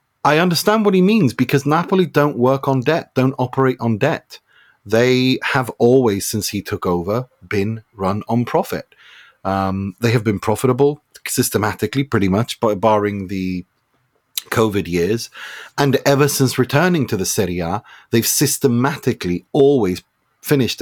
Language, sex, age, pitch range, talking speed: English, male, 30-49, 100-130 Hz, 145 wpm